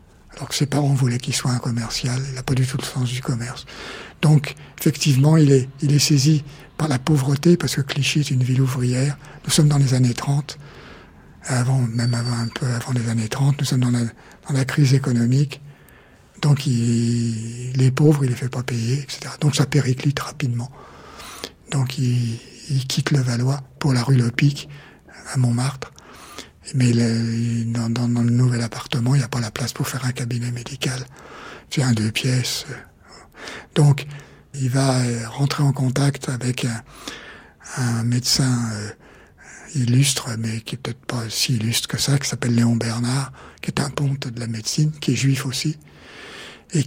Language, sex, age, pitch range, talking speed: French, male, 60-79, 120-140 Hz, 180 wpm